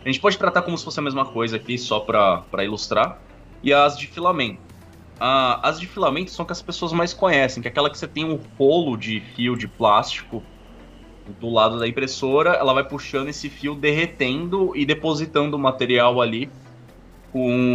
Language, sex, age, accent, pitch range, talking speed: Portuguese, male, 20-39, Brazilian, 110-140 Hz, 190 wpm